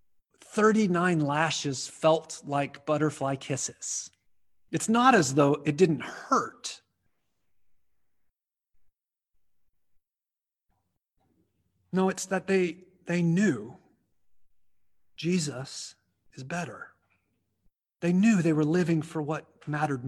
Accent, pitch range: American, 125-185 Hz